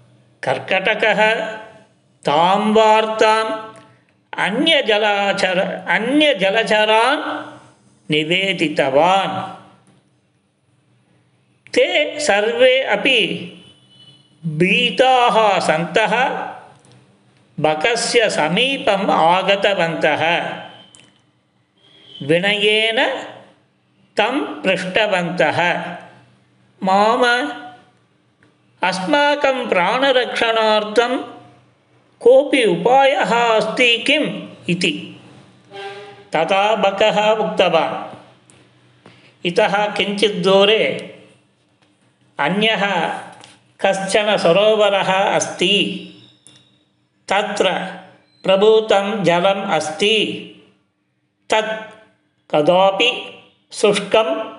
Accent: native